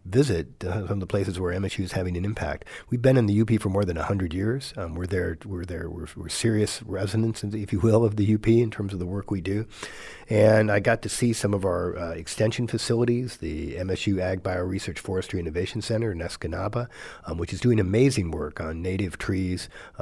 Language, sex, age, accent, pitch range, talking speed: English, male, 50-69, American, 85-110 Hz, 220 wpm